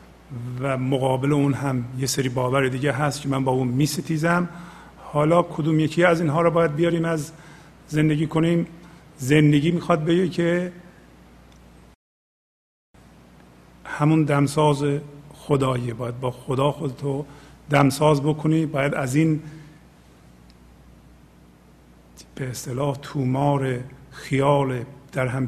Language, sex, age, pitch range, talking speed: English, male, 50-69, 130-155 Hz, 115 wpm